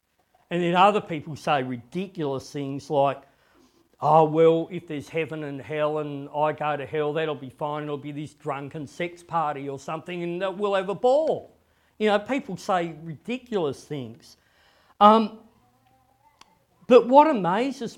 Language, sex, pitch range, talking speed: English, male, 155-215 Hz, 155 wpm